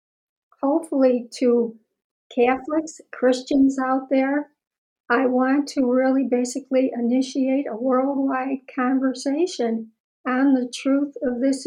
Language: English